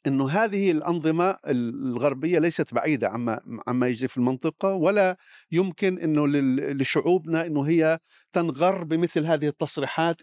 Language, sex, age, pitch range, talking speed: Arabic, male, 50-69, 130-175 Hz, 125 wpm